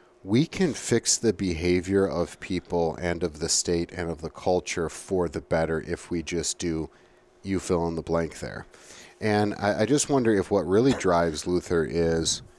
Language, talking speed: English, 185 wpm